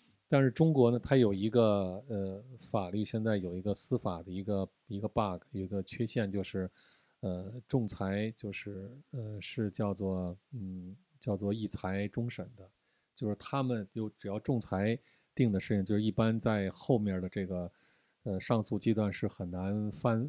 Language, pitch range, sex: Chinese, 95-115 Hz, male